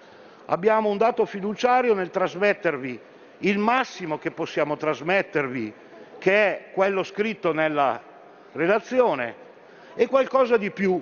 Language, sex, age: Italian, male, 50-69